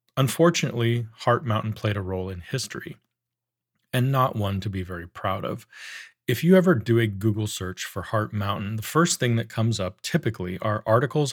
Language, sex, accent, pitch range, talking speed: English, male, American, 105-125 Hz, 185 wpm